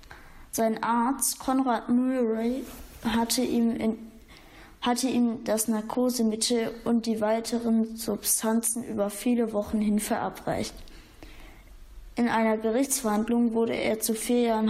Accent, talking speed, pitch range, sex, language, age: German, 105 wpm, 220-235 Hz, female, German, 20-39